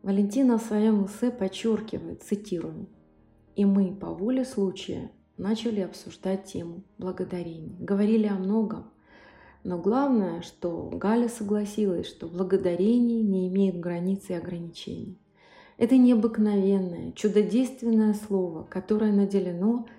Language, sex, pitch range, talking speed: Russian, female, 185-220 Hz, 110 wpm